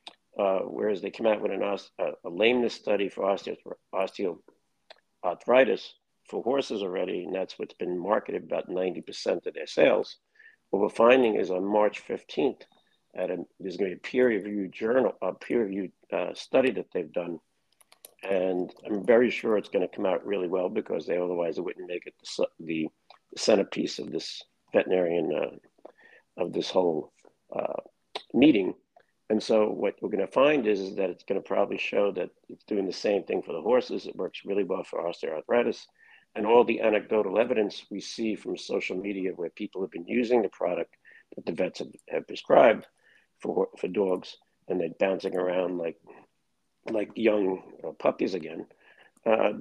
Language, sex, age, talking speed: English, male, 50-69, 180 wpm